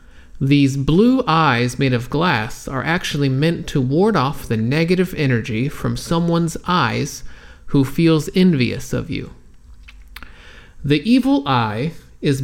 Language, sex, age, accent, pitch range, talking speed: Turkish, male, 30-49, American, 115-165 Hz, 130 wpm